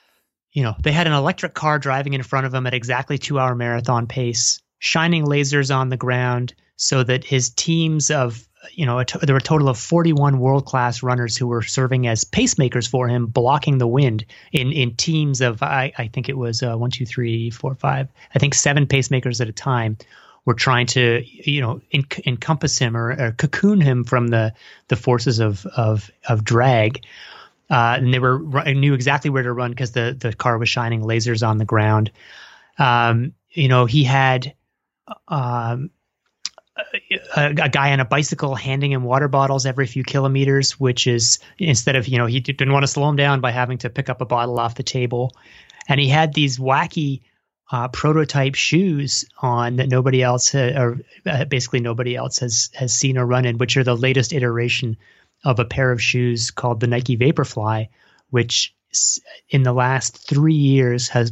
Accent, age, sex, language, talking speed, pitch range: American, 30-49, male, English, 195 wpm, 120-140 Hz